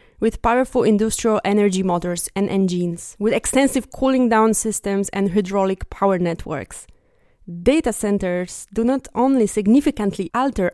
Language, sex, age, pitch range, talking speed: English, female, 20-39, 190-240 Hz, 125 wpm